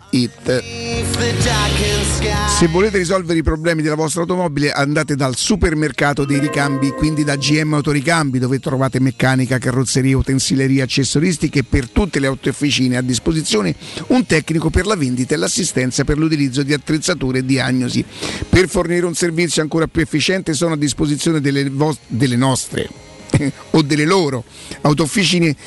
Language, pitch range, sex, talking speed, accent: Italian, 135-165 Hz, male, 145 wpm, native